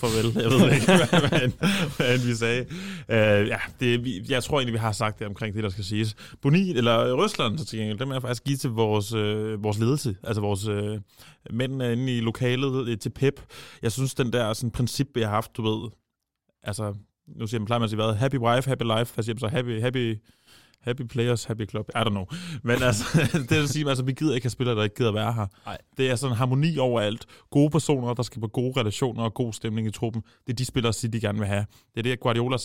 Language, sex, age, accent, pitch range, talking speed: Danish, male, 20-39, native, 110-130 Hz, 245 wpm